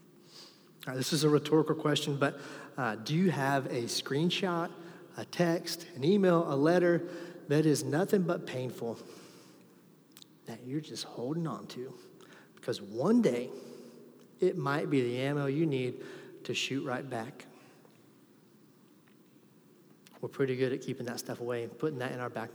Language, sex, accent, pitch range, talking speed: English, male, American, 140-170 Hz, 150 wpm